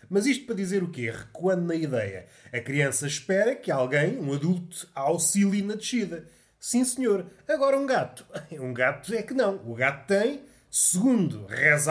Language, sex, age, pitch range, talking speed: Portuguese, male, 30-49, 155-245 Hz, 170 wpm